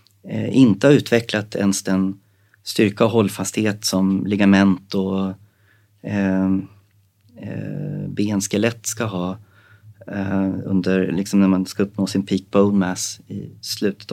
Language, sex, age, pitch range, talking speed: Swedish, male, 30-49, 95-110 Hz, 125 wpm